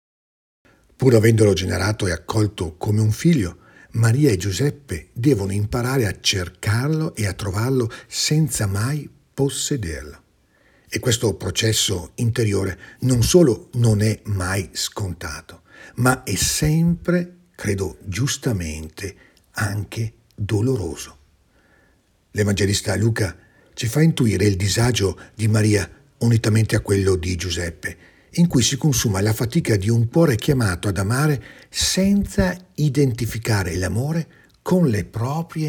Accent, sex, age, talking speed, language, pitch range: native, male, 50-69, 120 wpm, Italian, 95-135 Hz